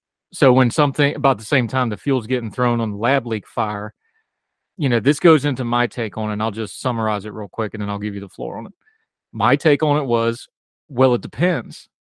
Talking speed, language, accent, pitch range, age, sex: 230 wpm, English, American, 110-135 Hz, 30-49, male